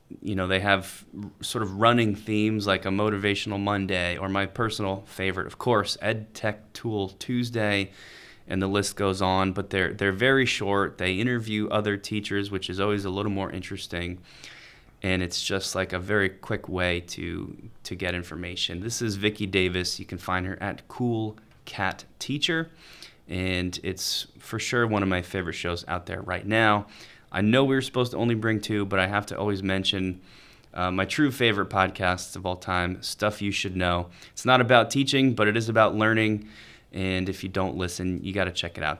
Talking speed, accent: 195 wpm, American